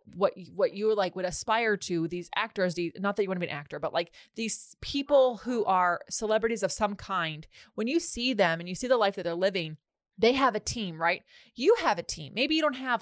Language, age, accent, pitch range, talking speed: English, 20-39, American, 180-230 Hz, 250 wpm